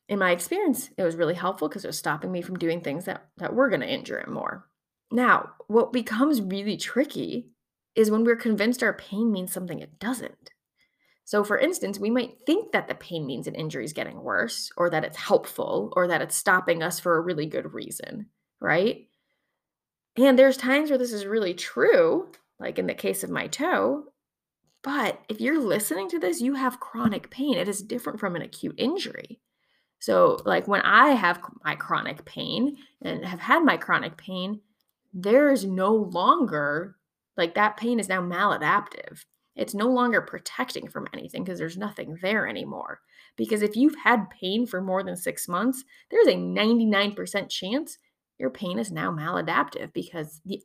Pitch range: 190-265 Hz